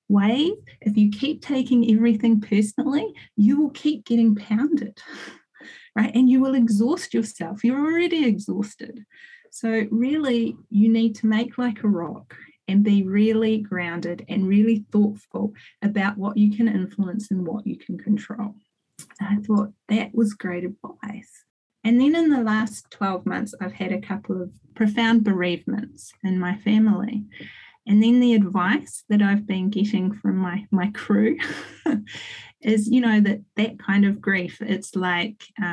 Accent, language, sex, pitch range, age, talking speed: Australian, English, female, 195-225 Hz, 30-49, 155 wpm